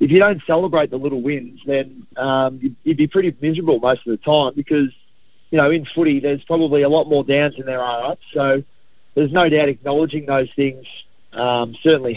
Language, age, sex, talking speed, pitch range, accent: English, 30-49, male, 205 wpm, 125-145 Hz, Australian